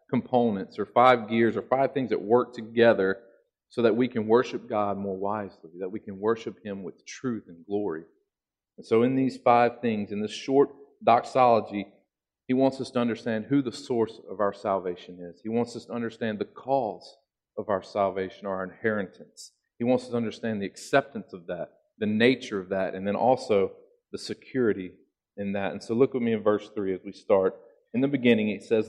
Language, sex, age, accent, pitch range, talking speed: English, male, 40-59, American, 105-140 Hz, 200 wpm